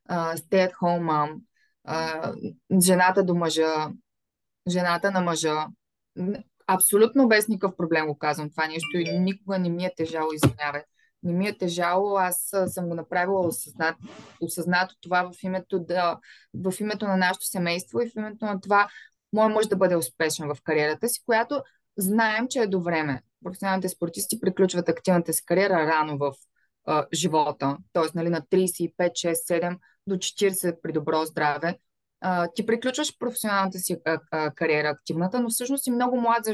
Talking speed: 170 wpm